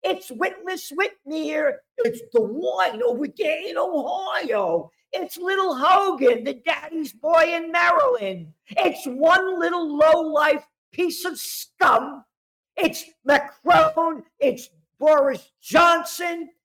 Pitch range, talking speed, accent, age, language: 195-310 Hz, 110 wpm, American, 50-69, English